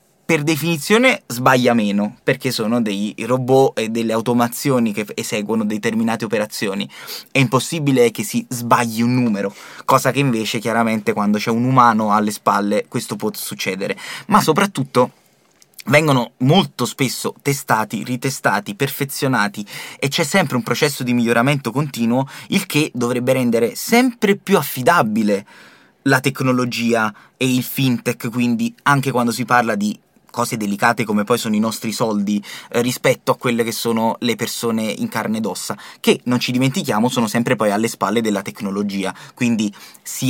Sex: male